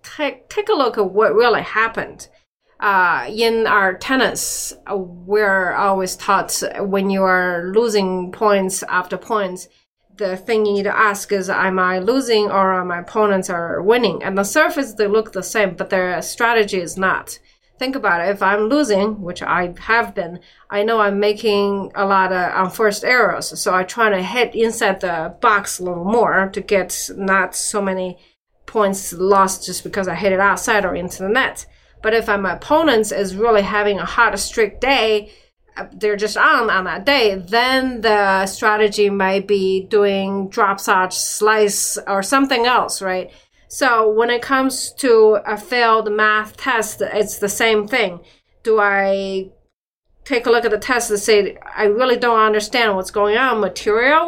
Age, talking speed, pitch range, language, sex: 30-49, 175 wpm, 190-225 Hz, English, female